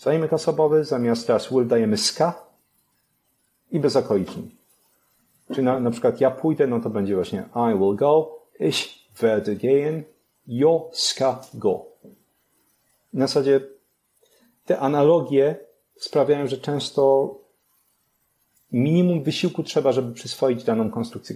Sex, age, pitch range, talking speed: male, 40-59, 115-140 Hz, 120 wpm